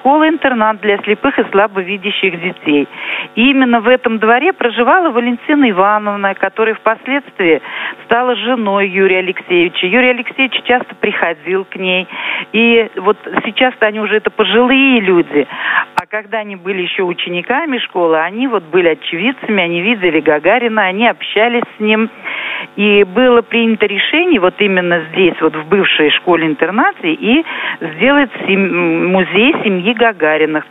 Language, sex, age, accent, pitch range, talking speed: Russian, female, 50-69, native, 180-235 Hz, 135 wpm